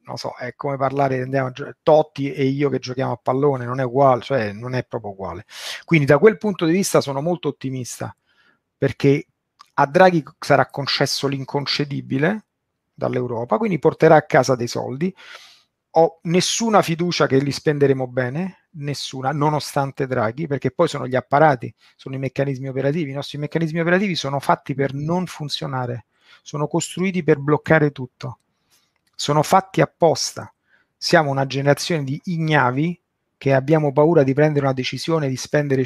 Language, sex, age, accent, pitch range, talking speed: Italian, male, 40-59, native, 135-165 Hz, 155 wpm